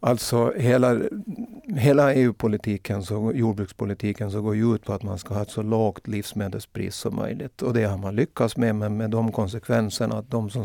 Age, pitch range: 50-69, 105-120 Hz